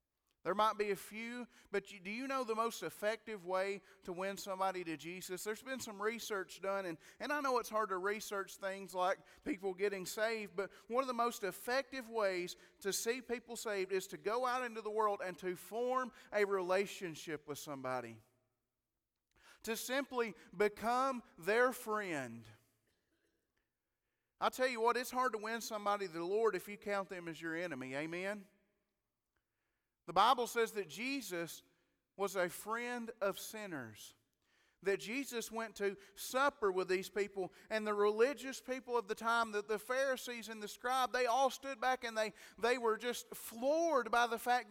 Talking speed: 175 wpm